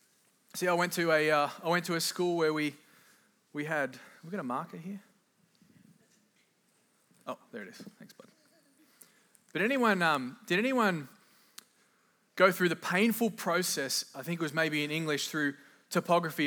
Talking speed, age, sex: 170 wpm, 20-39, male